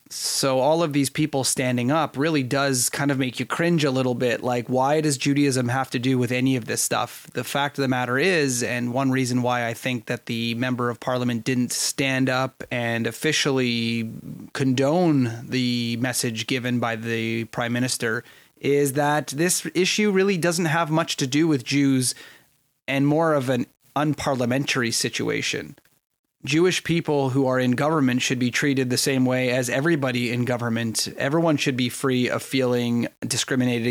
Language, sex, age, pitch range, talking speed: English, male, 30-49, 120-140 Hz, 175 wpm